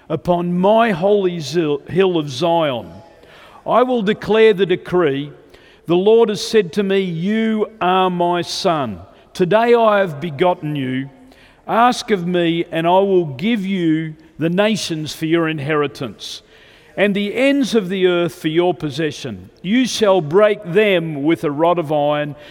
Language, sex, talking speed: English, male, 150 wpm